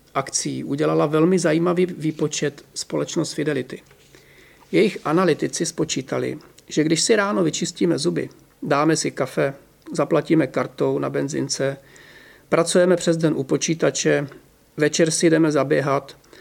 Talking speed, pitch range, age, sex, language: 115 wpm, 150-175 Hz, 40-59, male, Czech